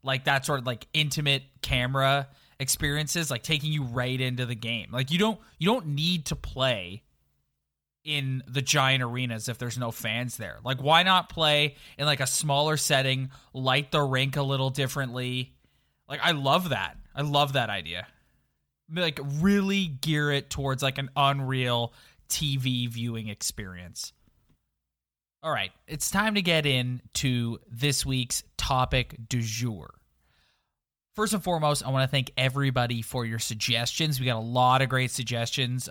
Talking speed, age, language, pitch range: 160 wpm, 20-39, English, 115-145 Hz